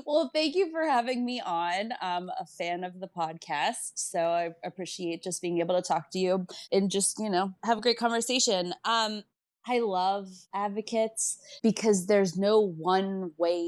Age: 20-39